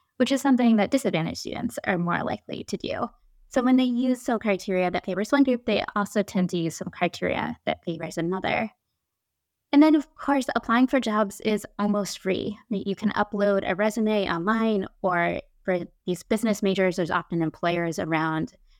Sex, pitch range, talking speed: female, 175-235 Hz, 180 wpm